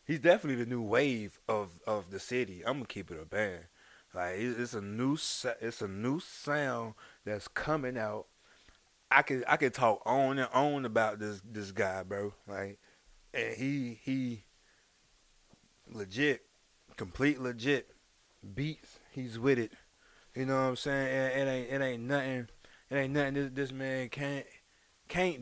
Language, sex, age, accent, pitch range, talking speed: English, male, 20-39, American, 105-140 Hz, 165 wpm